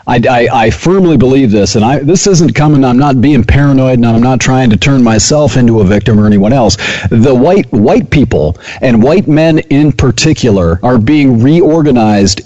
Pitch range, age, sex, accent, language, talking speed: 110-150 Hz, 50-69, male, American, English, 195 wpm